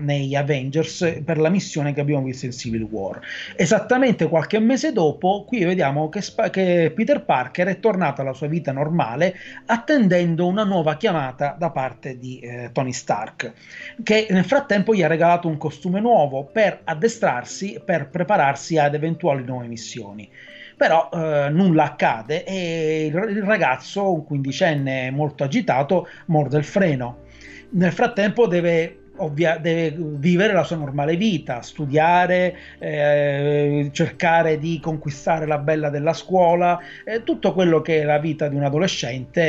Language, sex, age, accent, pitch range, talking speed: Italian, male, 30-49, native, 145-185 Hz, 150 wpm